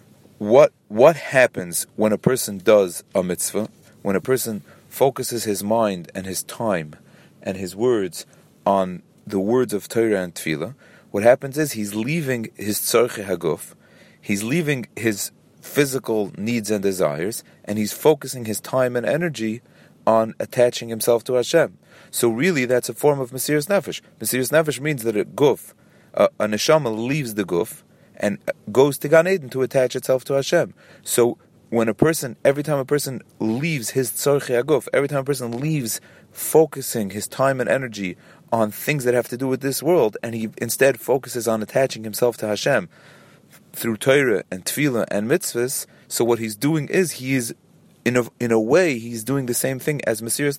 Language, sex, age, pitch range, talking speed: English, male, 40-59, 110-140 Hz, 175 wpm